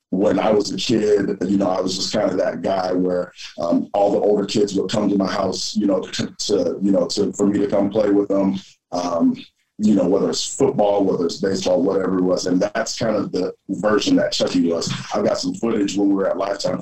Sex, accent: male, American